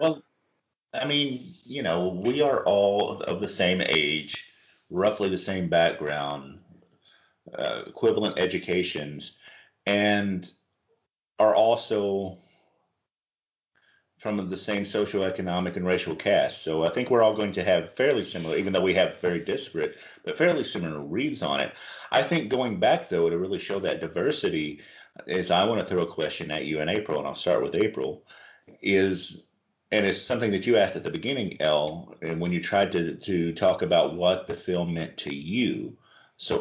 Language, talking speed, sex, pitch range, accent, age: English, 170 wpm, male, 80-100 Hz, American, 40-59